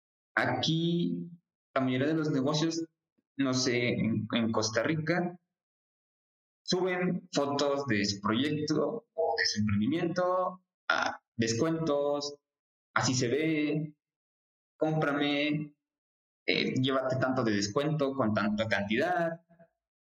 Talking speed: 105 wpm